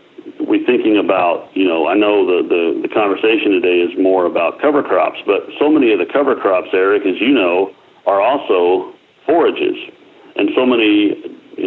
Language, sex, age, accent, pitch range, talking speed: English, male, 60-79, American, 325-385 Hz, 175 wpm